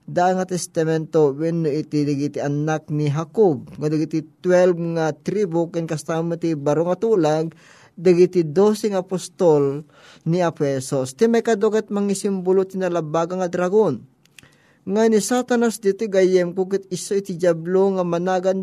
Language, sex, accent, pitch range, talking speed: Filipino, male, native, 160-200 Hz, 140 wpm